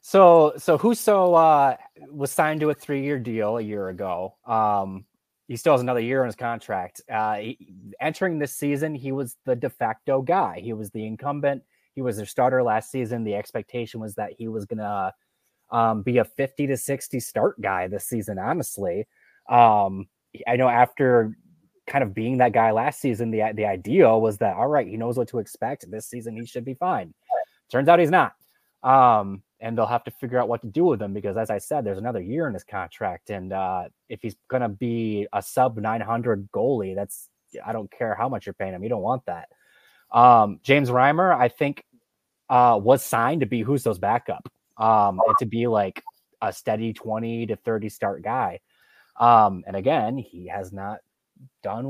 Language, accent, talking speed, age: English, American, 200 wpm, 20-39